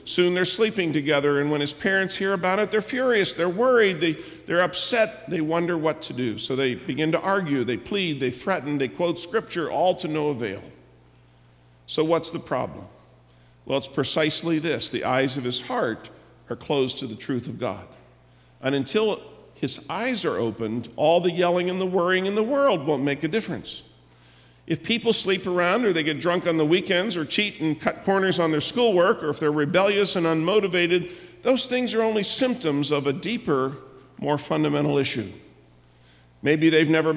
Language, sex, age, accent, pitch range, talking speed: English, male, 50-69, American, 130-180 Hz, 185 wpm